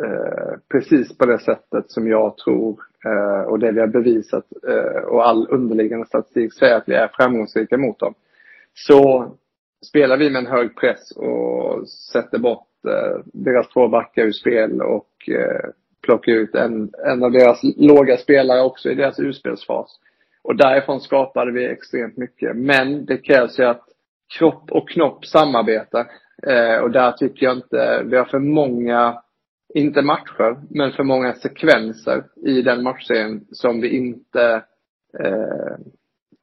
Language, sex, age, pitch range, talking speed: Swedish, male, 30-49, 120-145 Hz, 145 wpm